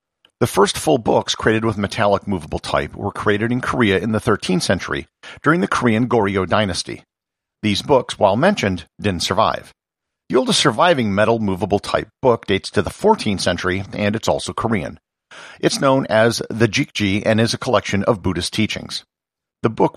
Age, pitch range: 50-69, 95-125 Hz